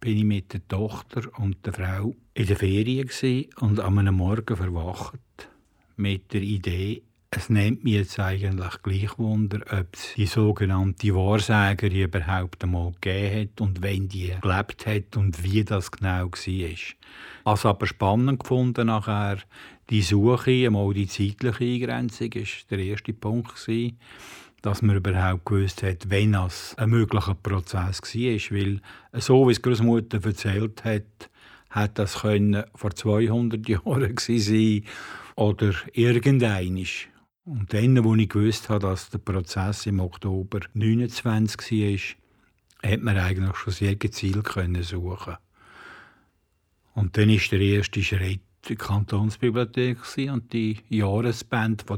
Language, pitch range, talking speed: German, 95-115 Hz, 140 wpm